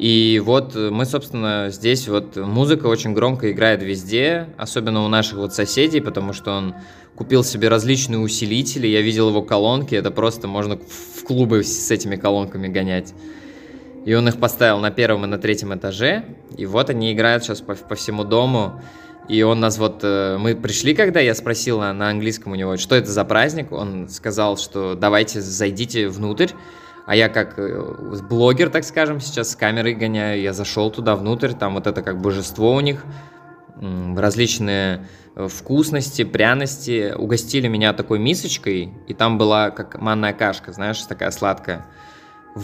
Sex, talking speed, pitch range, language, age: male, 160 wpm, 100-125 Hz, Russian, 20-39